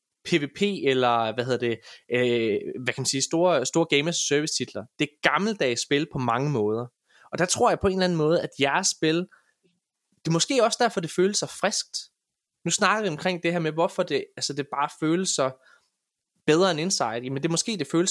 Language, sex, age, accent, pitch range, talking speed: Danish, male, 20-39, native, 125-175 Hz, 220 wpm